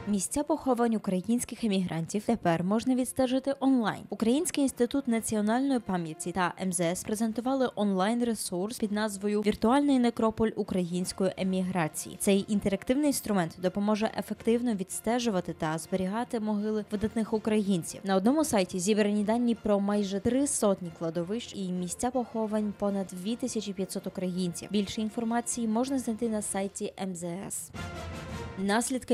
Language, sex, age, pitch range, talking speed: Polish, female, 20-39, 190-240 Hz, 120 wpm